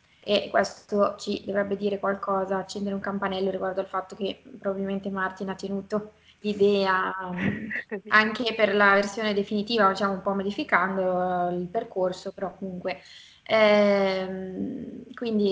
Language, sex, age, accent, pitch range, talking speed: Italian, female, 20-39, native, 195-220 Hz, 130 wpm